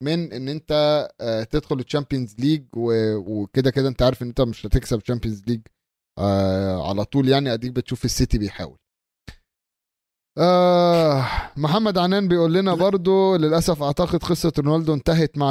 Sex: male